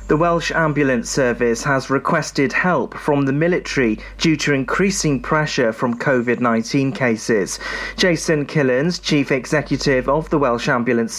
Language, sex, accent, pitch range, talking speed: English, male, British, 130-165 Hz, 135 wpm